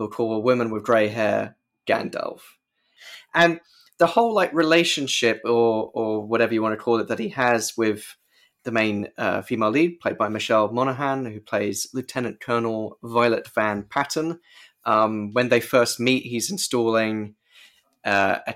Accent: British